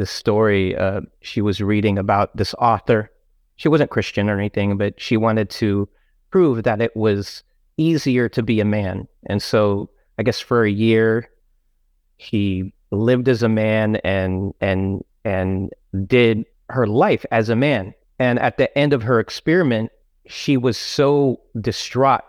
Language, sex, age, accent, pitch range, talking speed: English, male, 30-49, American, 105-130 Hz, 155 wpm